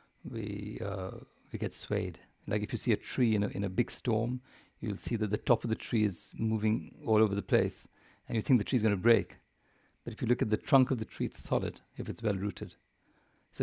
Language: English